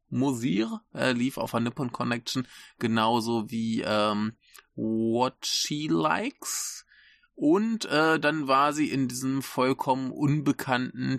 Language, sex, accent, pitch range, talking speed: German, male, German, 115-145 Hz, 115 wpm